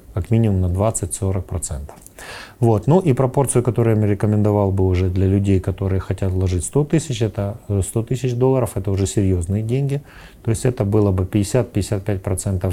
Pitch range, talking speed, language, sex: 95-115 Hz, 155 wpm, Ukrainian, male